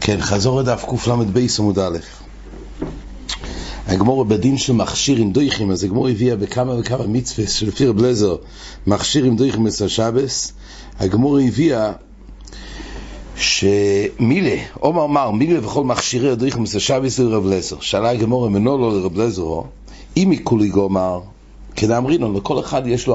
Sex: male